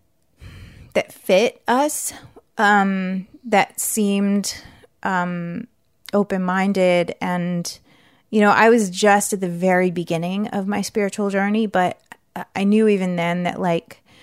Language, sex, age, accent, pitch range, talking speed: English, female, 30-49, American, 185-225 Hz, 125 wpm